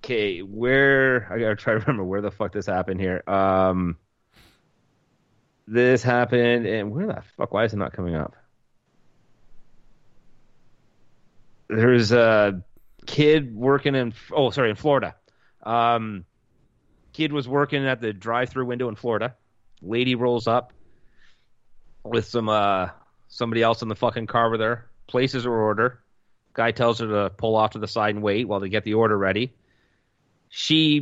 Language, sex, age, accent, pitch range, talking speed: English, male, 30-49, American, 105-130 Hz, 155 wpm